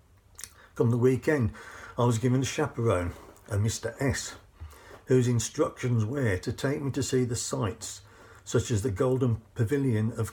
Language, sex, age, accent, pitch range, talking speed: English, male, 50-69, British, 100-130 Hz, 155 wpm